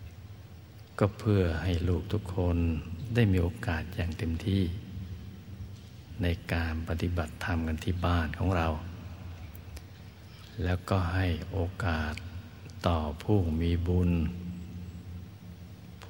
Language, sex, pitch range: Thai, male, 85-100 Hz